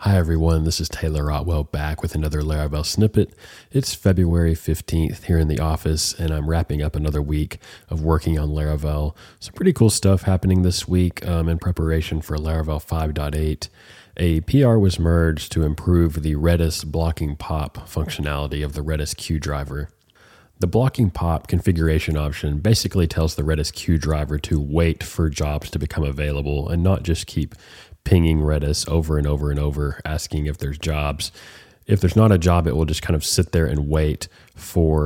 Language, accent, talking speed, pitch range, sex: English, American, 180 wpm, 75-90 Hz, male